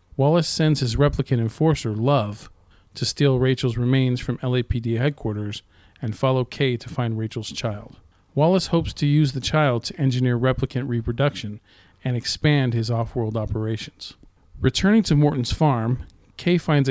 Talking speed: 145 wpm